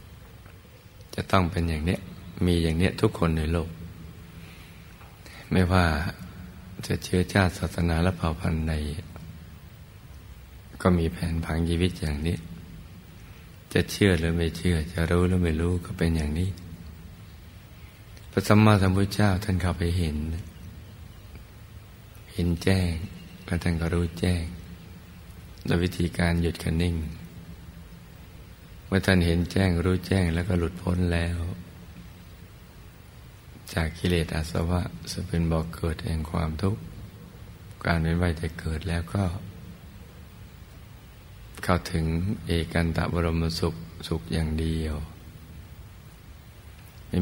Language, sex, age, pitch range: Thai, male, 60-79, 85-90 Hz